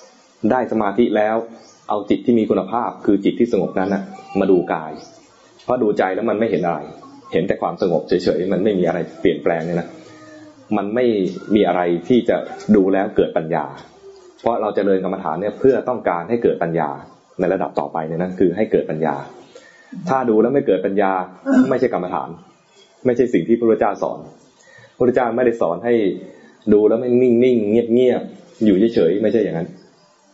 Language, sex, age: English, male, 20-39